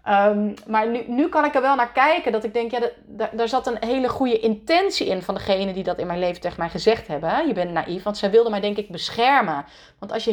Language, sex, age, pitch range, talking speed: Dutch, female, 30-49, 170-235 Hz, 250 wpm